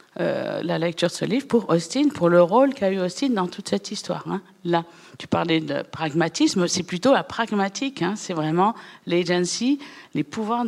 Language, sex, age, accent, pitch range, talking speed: French, female, 50-69, French, 165-220 Hz, 190 wpm